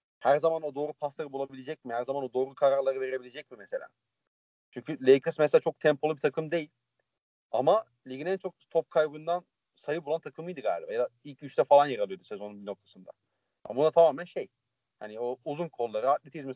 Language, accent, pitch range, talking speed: Turkish, native, 130-175 Hz, 180 wpm